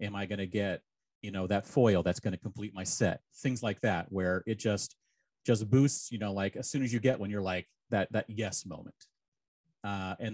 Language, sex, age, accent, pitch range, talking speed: English, male, 30-49, American, 95-125 Hz, 230 wpm